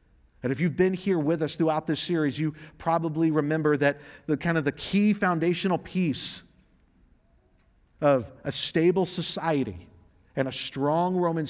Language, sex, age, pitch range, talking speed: English, male, 40-59, 120-165 Hz, 150 wpm